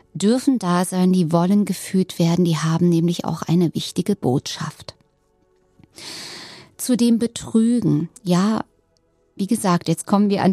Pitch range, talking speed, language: 170-220 Hz, 135 wpm, German